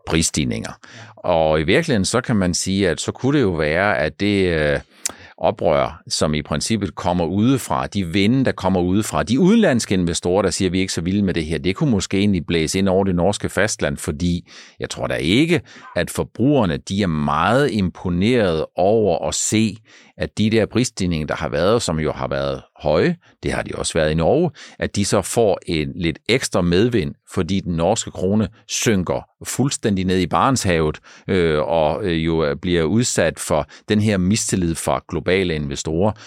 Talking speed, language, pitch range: 185 wpm, Danish, 80-105 Hz